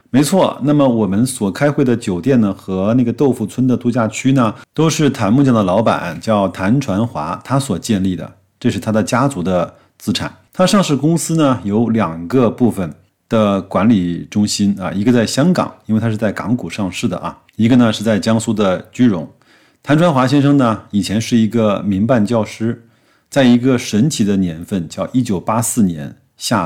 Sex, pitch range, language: male, 95-125 Hz, Chinese